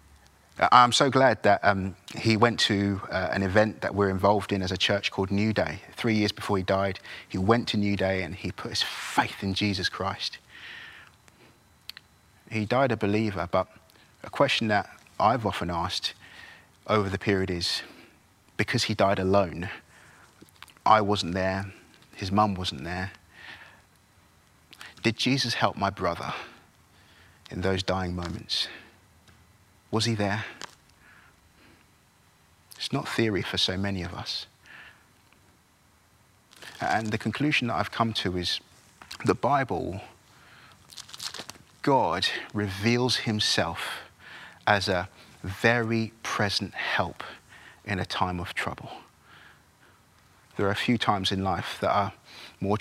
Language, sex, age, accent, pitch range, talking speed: English, male, 30-49, British, 95-110 Hz, 135 wpm